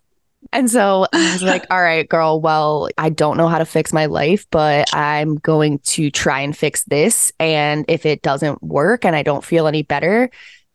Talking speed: 200 wpm